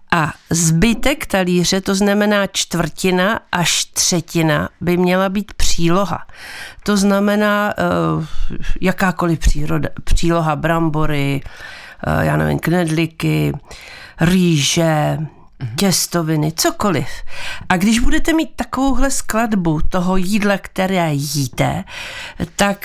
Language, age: Czech, 50-69